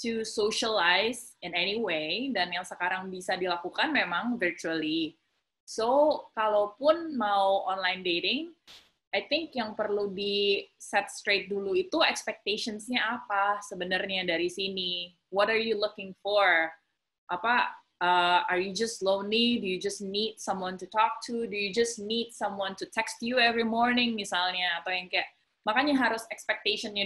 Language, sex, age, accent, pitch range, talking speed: Indonesian, female, 20-39, native, 185-230 Hz, 150 wpm